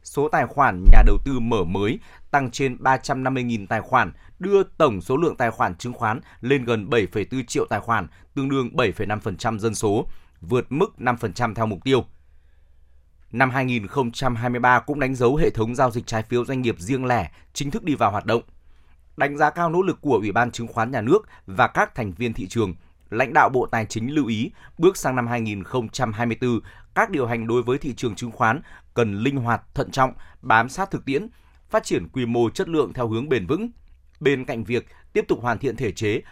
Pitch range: 110-130 Hz